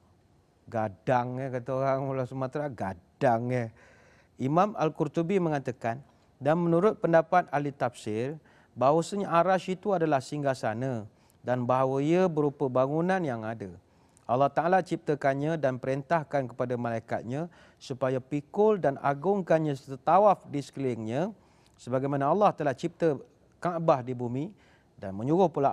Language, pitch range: Malay, 125-165 Hz